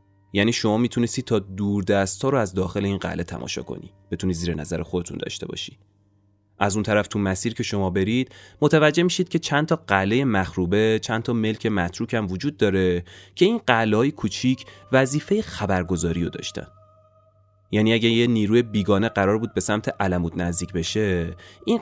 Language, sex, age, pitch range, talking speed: Persian, male, 30-49, 100-130 Hz, 170 wpm